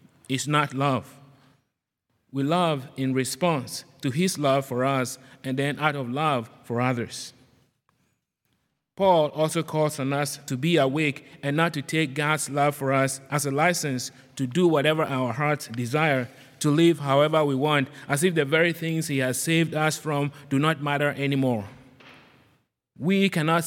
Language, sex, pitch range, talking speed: English, male, 135-160 Hz, 165 wpm